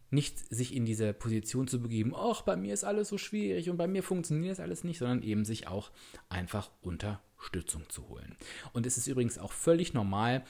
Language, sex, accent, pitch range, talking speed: German, male, German, 100-135 Hz, 205 wpm